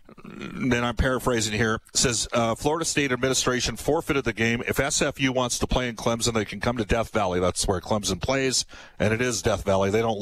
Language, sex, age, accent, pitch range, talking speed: English, male, 40-59, American, 105-125 Hz, 215 wpm